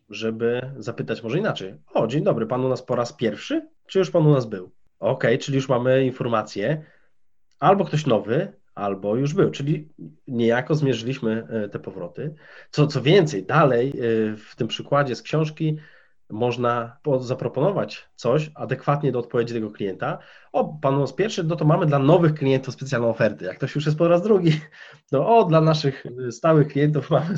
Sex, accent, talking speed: male, native, 175 wpm